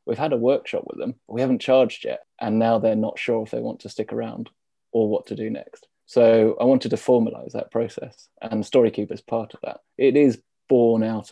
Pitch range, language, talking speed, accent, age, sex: 110-125 Hz, English, 230 wpm, British, 20-39, male